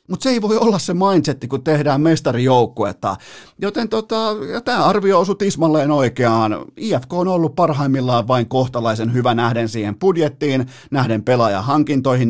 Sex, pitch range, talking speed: male, 115-150 Hz, 140 wpm